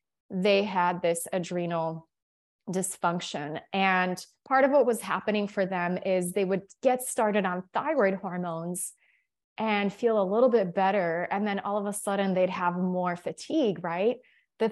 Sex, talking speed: female, 160 wpm